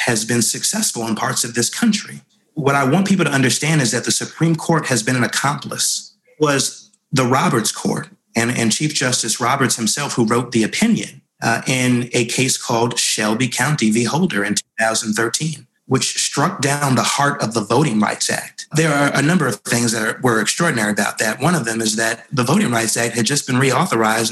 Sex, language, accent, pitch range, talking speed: male, English, American, 115-160 Hz, 200 wpm